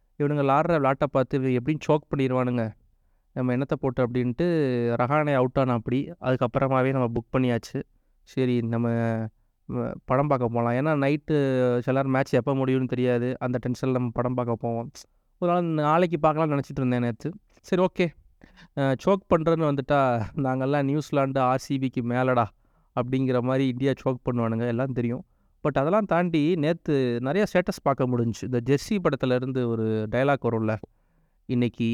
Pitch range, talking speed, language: 125-150 Hz, 135 wpm, Tamil